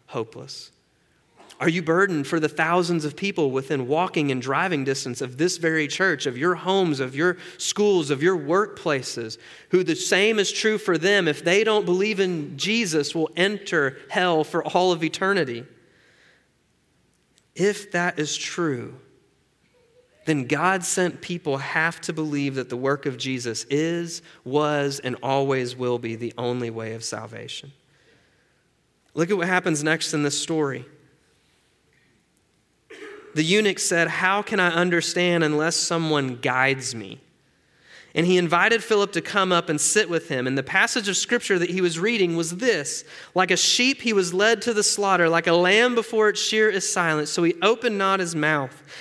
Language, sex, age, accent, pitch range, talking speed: English, male, 30-49, American, 150-195 Hz, 170 wpm